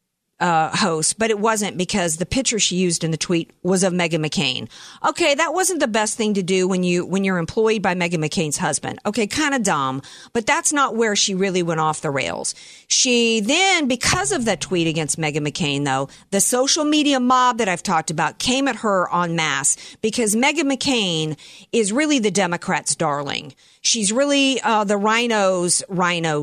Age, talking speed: 50-69, 195 wpm